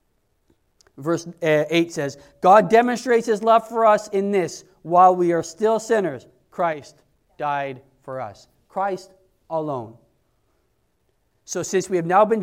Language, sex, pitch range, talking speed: English, male, 165-230 Hz, 135 wpm